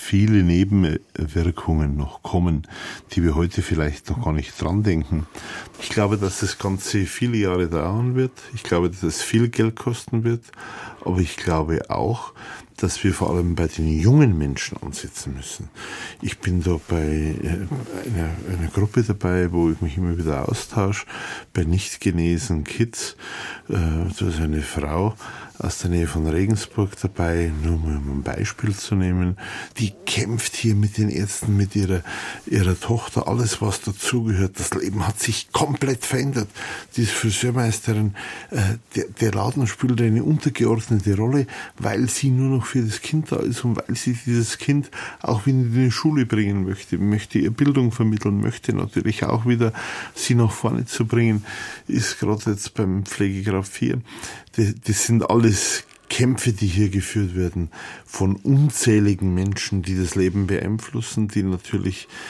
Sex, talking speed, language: male, 160 wpm, German